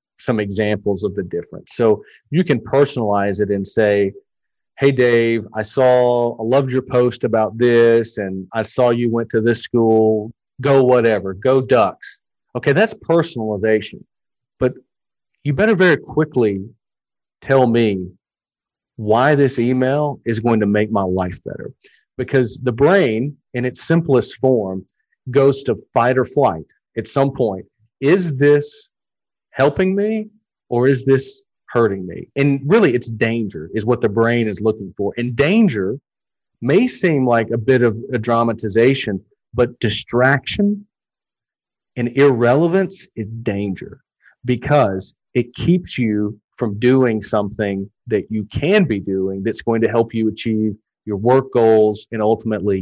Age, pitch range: 40-59, 110-135 Hz